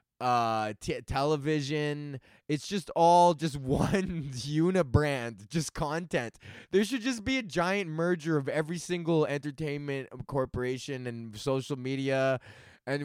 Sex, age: male, 20-39